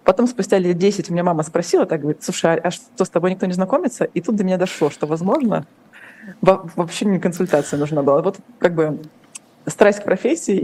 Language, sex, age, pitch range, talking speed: Russian, female, 20-39, 170-215 Hz, 205 wpm